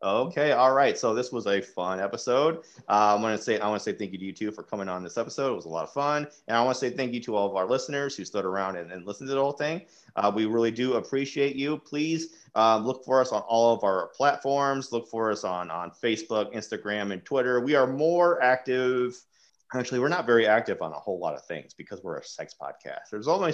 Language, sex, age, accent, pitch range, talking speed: English, male, 30-49, American, 105-140 Hz, 260 wpm